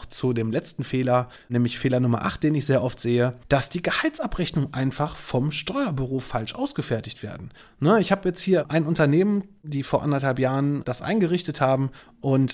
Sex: male